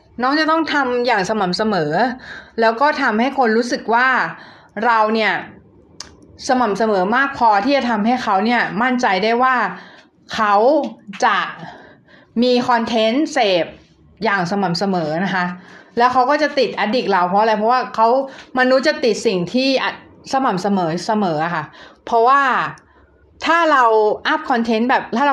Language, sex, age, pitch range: Thai, female, 20-39, 205-265 Hz